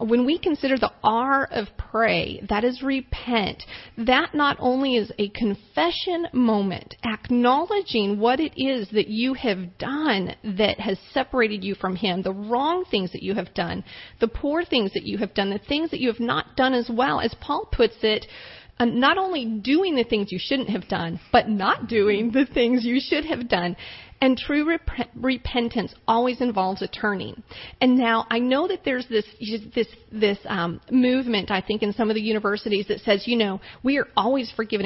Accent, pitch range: American, 210-260 Hz